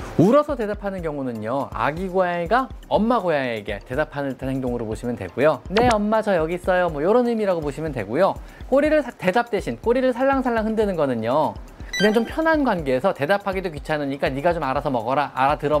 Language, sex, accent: Korean, male, native